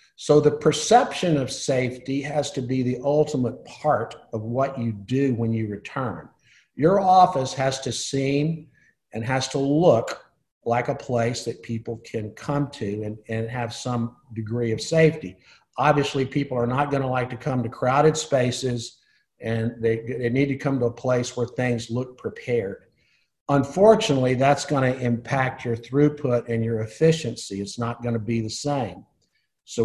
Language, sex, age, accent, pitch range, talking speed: English, male, 50-69, American, 115-145 Hz, 165 wpm